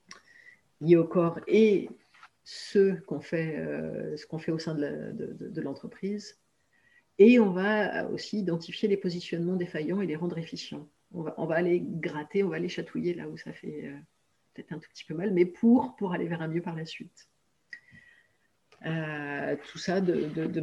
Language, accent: French, French